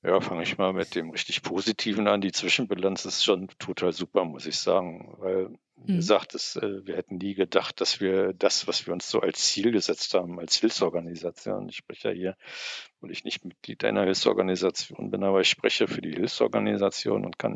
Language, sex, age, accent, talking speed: German, male, 60-79, German, 200 wpm